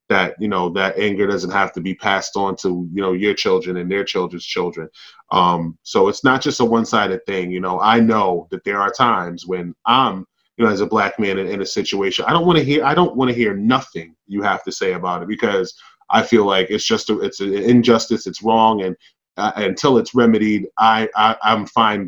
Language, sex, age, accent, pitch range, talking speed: English, male, 20-39, American, 95-120 Hz, 235 wpm